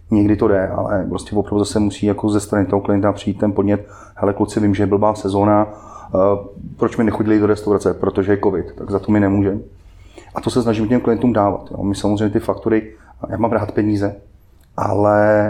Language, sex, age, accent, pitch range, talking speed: Czech, male, 30-49, native, 100-110 Hz, 205 wpm